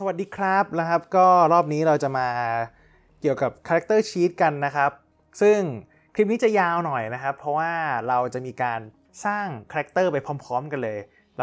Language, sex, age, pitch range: Thai, male, 20-39, 120-165 Hz